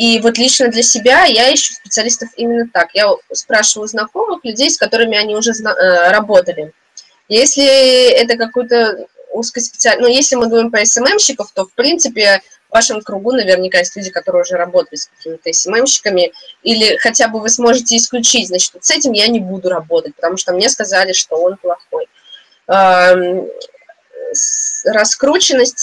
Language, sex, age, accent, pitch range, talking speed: Russian, female, 20-39, native, 200-255 Hz, 150 wpm